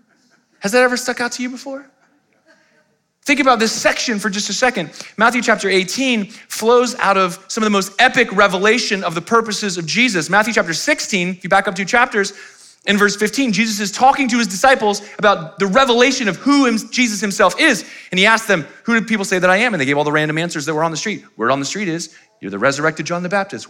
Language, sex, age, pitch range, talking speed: English, male, 30-49, 150-215 Hz, 235 wpm